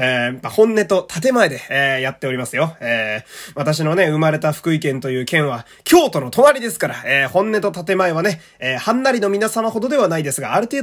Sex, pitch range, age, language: male, 160-235 Hz, 20-39, Japanese